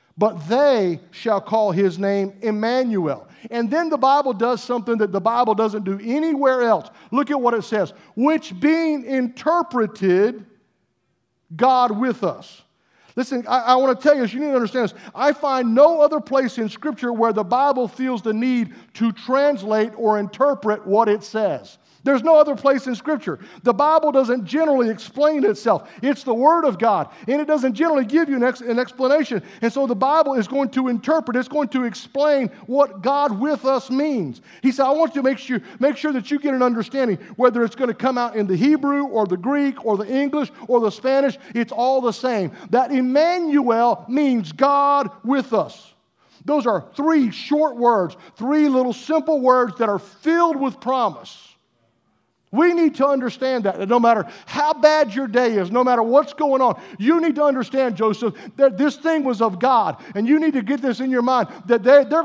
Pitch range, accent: 225-285 Hz, American